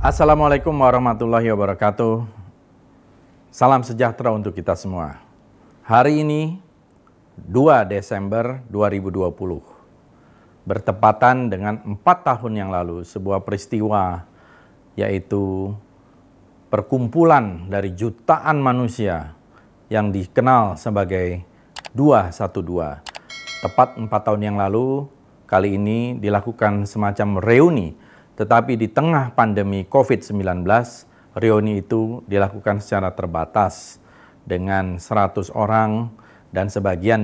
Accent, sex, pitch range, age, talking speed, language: native, male, 100-120 Hz, 40-59, 90 wpm, Indonesian